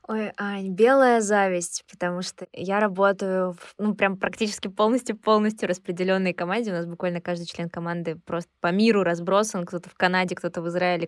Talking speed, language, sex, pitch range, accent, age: 170 wpm, Russian, female, 175-220 Hz, native, 20-39